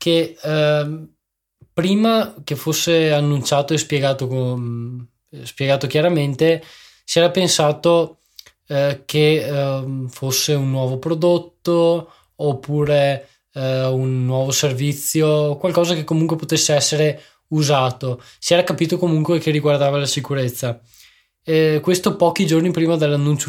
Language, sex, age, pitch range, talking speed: Italian, male, 20-39, 130-165 Hz, 115 wpm